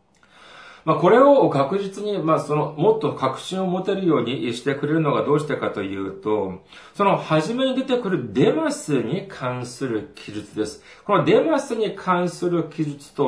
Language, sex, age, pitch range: Japanese, male, 40-59, 120-200 Hz